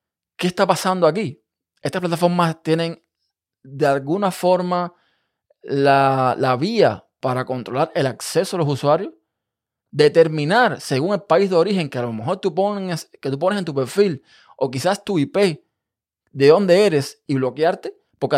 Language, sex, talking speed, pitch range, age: Spanish, male, 150 wpm, 130-170 Hz, 20-39